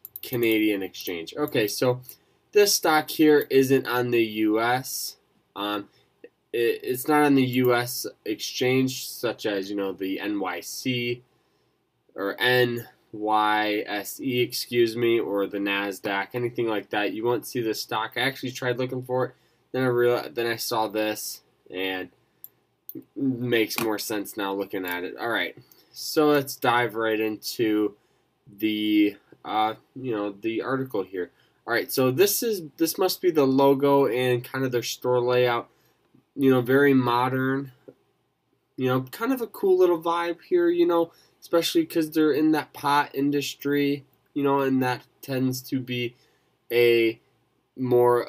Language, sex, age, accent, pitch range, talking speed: English, male, 10-29, American, 110-135 Hz, 155 wpm